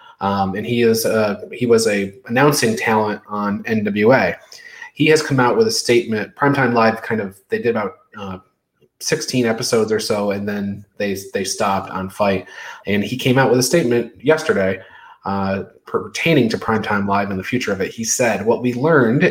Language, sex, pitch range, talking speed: English, male, 105-135 Hz, 190 wpm